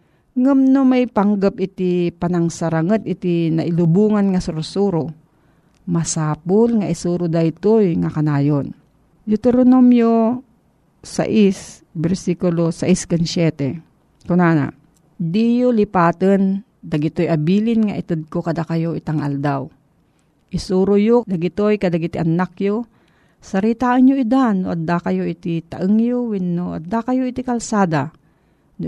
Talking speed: 110 wpm